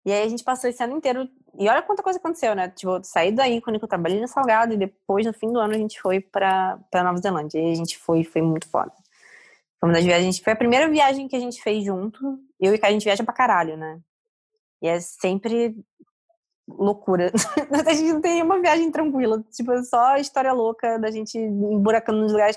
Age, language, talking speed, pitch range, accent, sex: 20-39, Portuguese, 230 wpm, 185-245 Hz, Brazilian, female